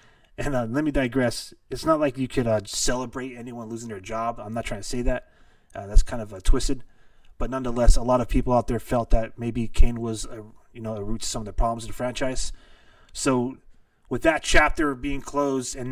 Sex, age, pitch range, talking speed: male, 20-39, 115-140 Hz, 225 wpm